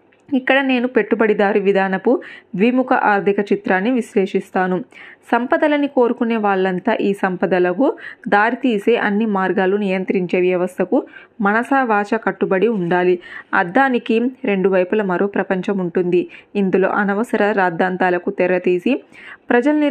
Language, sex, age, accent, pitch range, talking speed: Telugu, female, 20-39, native, 190-235 Hz, 95 wpm